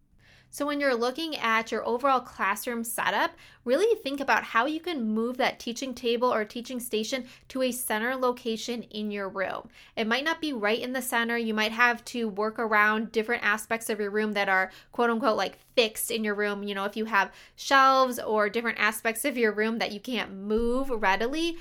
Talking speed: 205 wpm